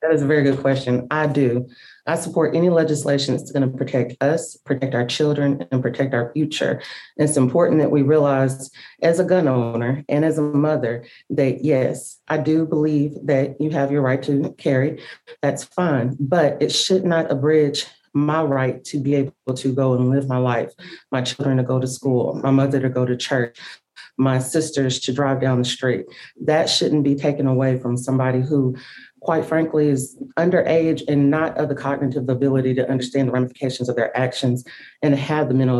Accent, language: American, English